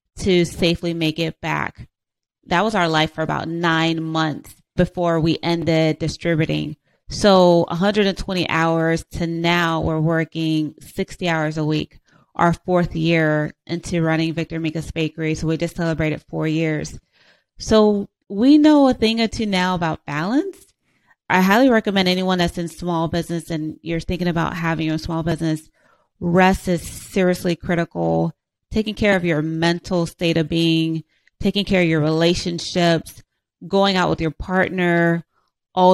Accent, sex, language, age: American, female, English, 30-49